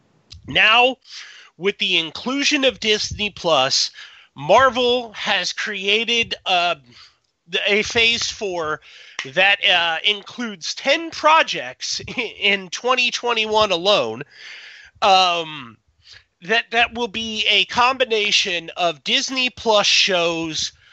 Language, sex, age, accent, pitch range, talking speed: English, male, 30-49, American, 165-215 Hz, 95 wpm